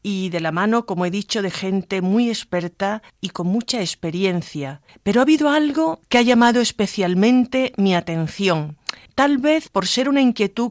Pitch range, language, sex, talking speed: 160-225 Hz, Spanish, female, 175 wpm